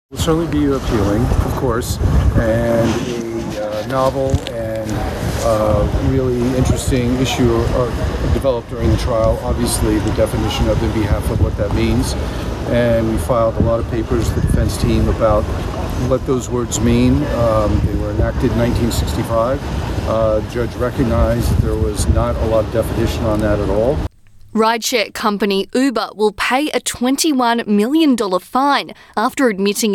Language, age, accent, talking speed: English, 40-59, American, 160 wpm